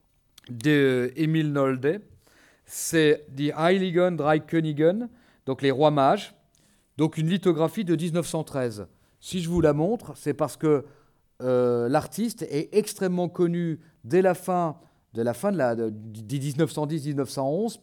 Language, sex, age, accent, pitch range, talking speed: French, male, 40-59, French, 130-170 Hz, 125 wpm